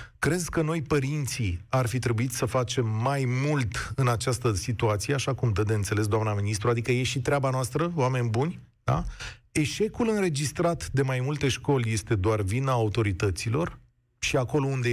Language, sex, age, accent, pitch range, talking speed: Romanian, male, 30-49, native, 105-140 Hz, 170 wpm